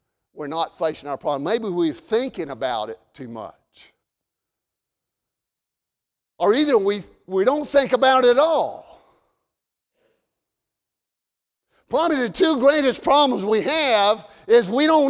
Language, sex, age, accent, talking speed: English, male, 50-69, American, 125 wpm